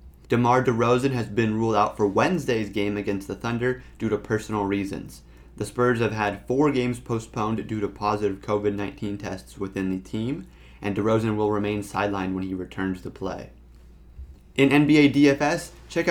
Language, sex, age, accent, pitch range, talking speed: English, male, 30-49, American, 105-125 Hz, 170 wpm